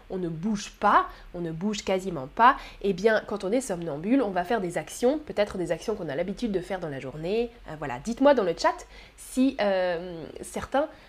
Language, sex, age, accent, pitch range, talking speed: French, female, 20-39, French, 195-270 Hz, 215 wpm